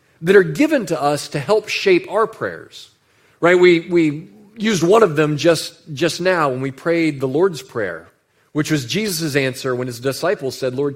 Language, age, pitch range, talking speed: English, 40-59, 135-190 Hz, 190 wpm